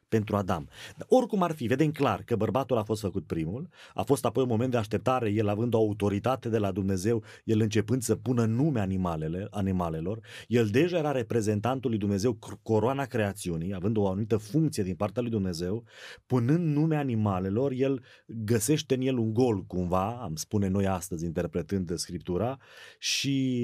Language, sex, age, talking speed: Romanian, male, 30-49, 170 wpm